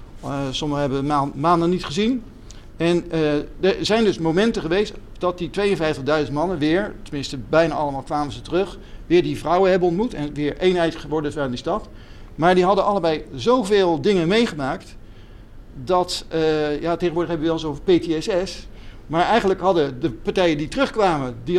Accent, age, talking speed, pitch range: Dutch, 50-69, 170 wpm, 150-190 Hz